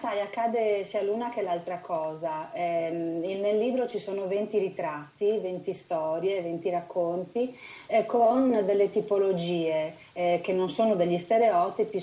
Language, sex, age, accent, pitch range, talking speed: Italian, female, 30-49, native, 175-205 Hz, 140 wpm